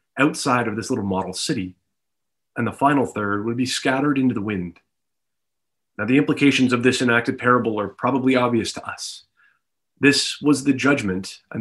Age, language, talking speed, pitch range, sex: 30-49, English, 170 wpm, 115-155 Hz, male